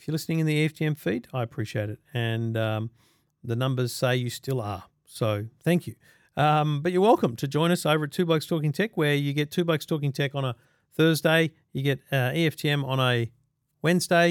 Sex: male